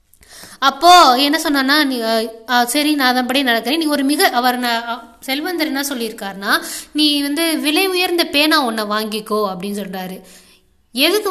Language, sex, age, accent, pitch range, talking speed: Tamil, female, 20-39, native, 235-305 Hz, 135 wpm